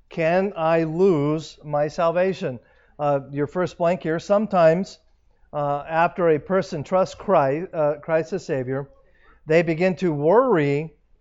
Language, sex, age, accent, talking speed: English, male, 50-69, American, 135 wpm